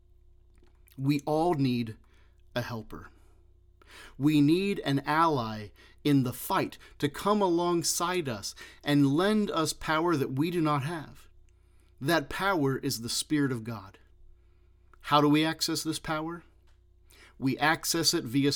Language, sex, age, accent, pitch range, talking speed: English, male, 40-59, American, 100-155 Hz, 135 wpm